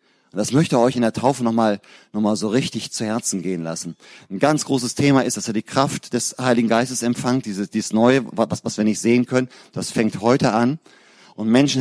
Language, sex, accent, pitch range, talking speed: German, male, German, 100-125 Hz, 220 wpm